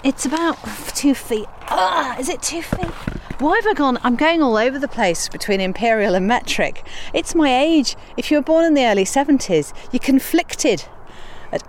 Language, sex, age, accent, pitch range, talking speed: English, female, 40-59, British, 190-280 Hz, 190 wpm